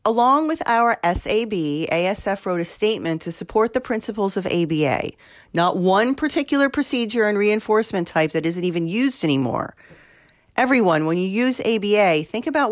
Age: 40-59